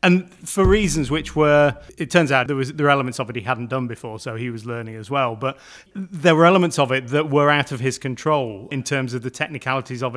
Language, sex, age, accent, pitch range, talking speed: English, male, 30-49, British, 125-145 Hz, 250 wpm